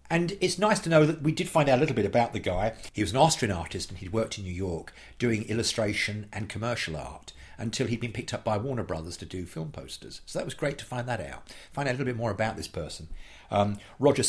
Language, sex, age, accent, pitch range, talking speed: English, male, 50-69, British, 90-120 Hz, 265 wpm